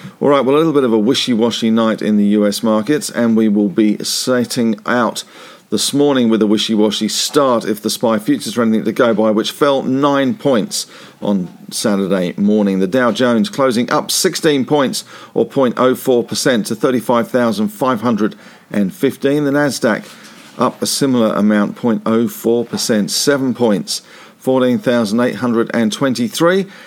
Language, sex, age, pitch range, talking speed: English, male, 50-69, 110-145 Hz, 140 wpm